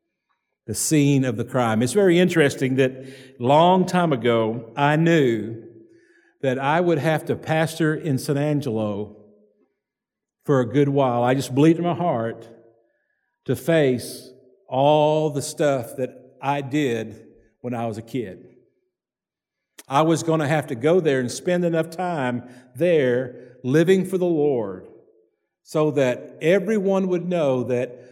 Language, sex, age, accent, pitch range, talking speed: English, male, 50-69, American, 125-170 Hz, 145 wpm